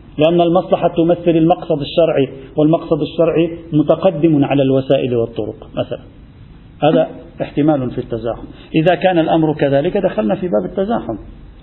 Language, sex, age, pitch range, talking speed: Arabic, male, 50-69, 155-205 Hz, 125 wpm